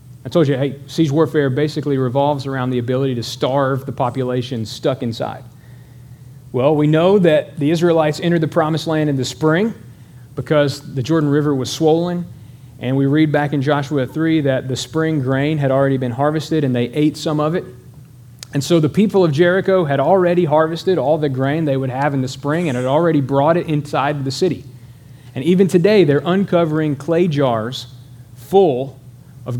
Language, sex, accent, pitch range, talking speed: English, male, American, 125-155 Hz, 185 wpm